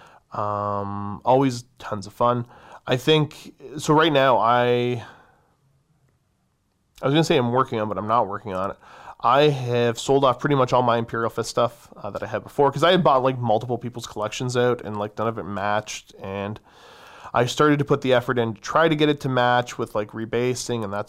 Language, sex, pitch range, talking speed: English, male, 110-135 Hz, 220 wpm